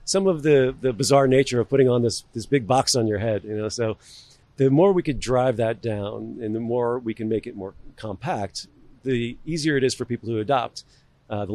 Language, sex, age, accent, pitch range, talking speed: English, male, 40-59, American, 110-135 Hz, 235 wpm